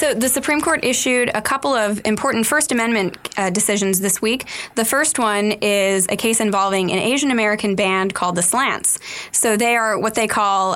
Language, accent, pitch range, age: English, American, 190-230 Hz, 20-39